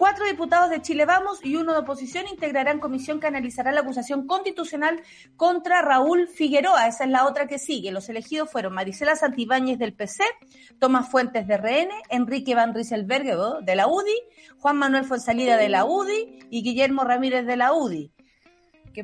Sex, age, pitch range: female, 40-59, 240-315 Hz